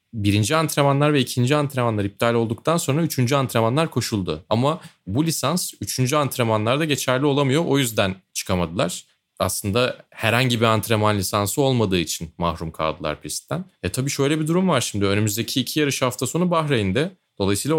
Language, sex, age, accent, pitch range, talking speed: Turkish, male, 30-49, native, 95-130 Hz, 150 wpm